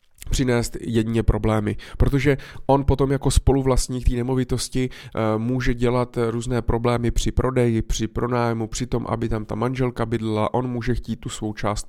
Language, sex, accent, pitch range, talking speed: Czech, male, native, 110-125 Hz, 155 wpm